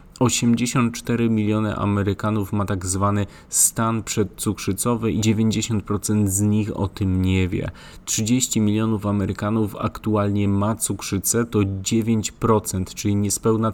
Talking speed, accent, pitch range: 115 wpm, native, 95-110 Hz